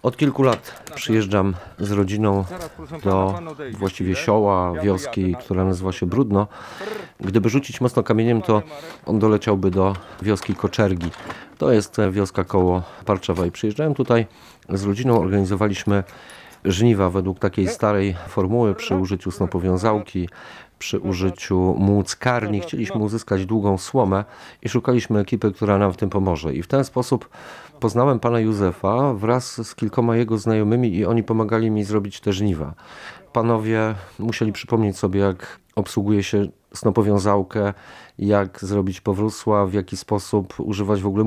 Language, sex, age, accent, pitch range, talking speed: Polish, male, 40-59, native, 95-115 Hz, 135 wpm